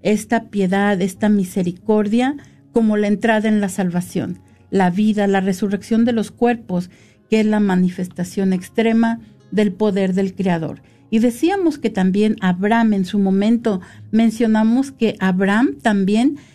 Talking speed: 140 wpm